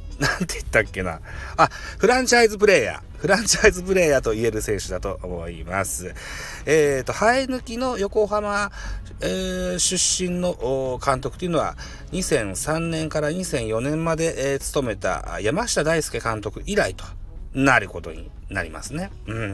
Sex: male